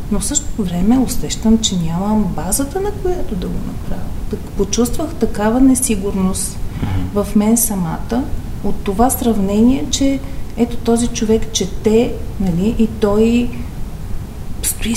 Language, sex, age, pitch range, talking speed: Bulgarian, female, 40-59, 195-235 Hz, 120 wpm